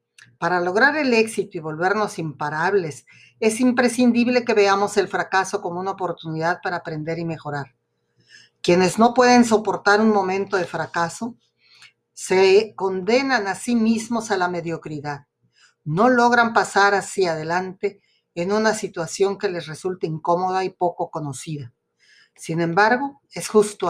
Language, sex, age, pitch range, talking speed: Spanish, female, 40-59, 155-205 Hz, 140 wpm